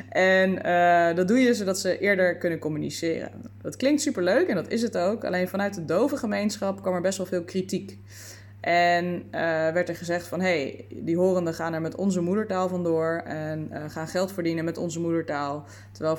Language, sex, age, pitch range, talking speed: Dutch, female, 20-39, 155-195 Hz, 200 wpm